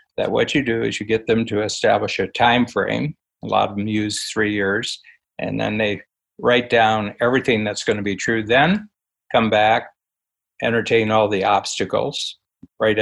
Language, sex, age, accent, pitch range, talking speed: English, male, 60-79, American, 110-130 Hz, 180 wpm